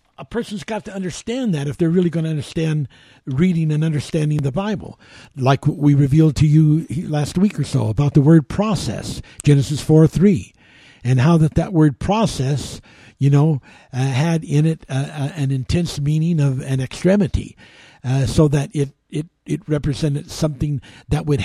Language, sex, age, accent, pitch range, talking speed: English, male, 60-79, American, 130-150 Hz, 175 wpm